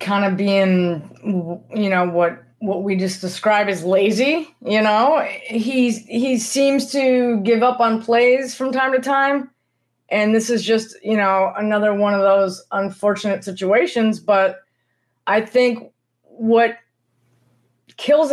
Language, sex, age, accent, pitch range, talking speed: English, female, 20-39, American, 205-265 Hz, 140 wpm